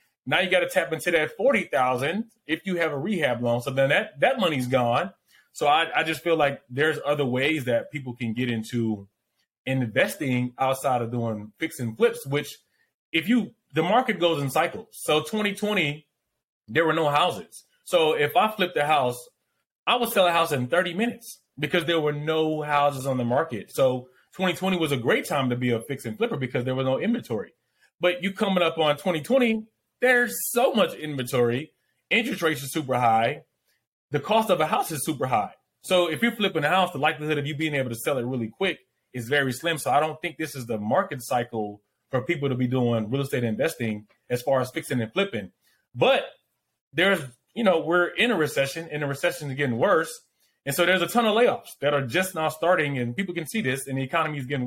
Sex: male